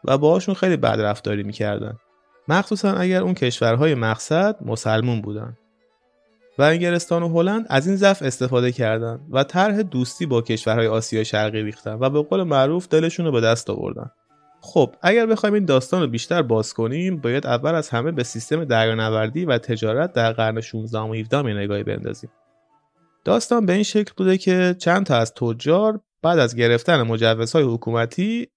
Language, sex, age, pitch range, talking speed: English, male, 30-49, 115-175 Hz, 165 wpm